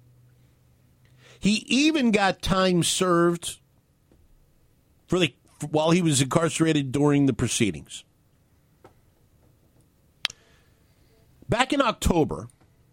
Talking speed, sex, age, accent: 70 wpm, male, 50-69, American